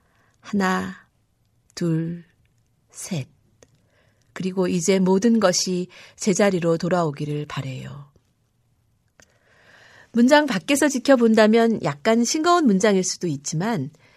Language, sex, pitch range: Korean, female, 140-210 Hz